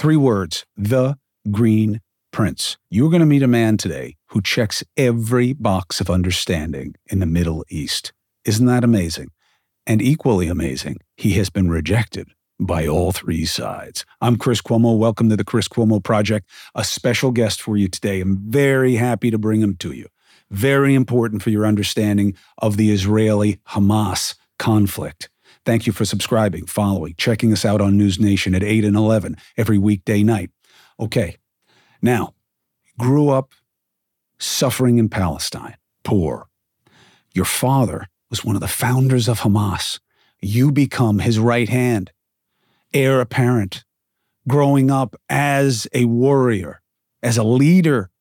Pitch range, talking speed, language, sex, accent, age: 100-130 Hz, 150 wpm, English, male, American, 50-69